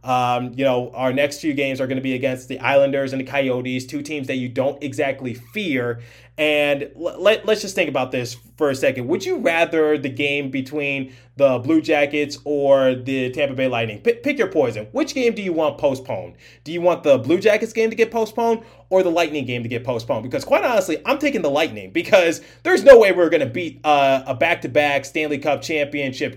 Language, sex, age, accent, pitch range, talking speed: English, male, 30-49, American, 135-175 Hz, 215 wpm